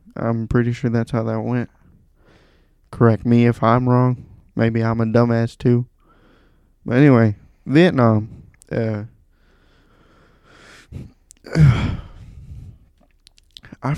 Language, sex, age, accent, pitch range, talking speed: English, male, 20-39, American, 110-140 Hz, 90 wpm